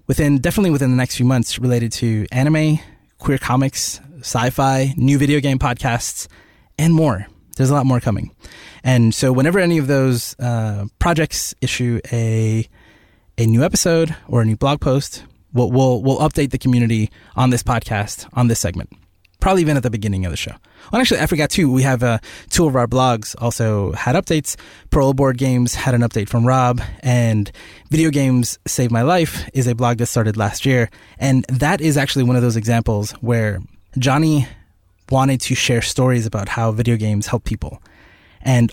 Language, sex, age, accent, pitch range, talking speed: English, male, 20-39, American, 110-140 Hz, 185 wpm